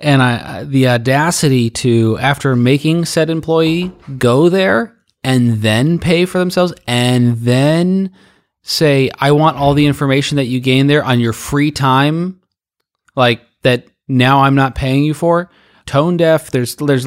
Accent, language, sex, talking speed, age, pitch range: American, English, male, 155 wpm, 30-49, 125-160 Hz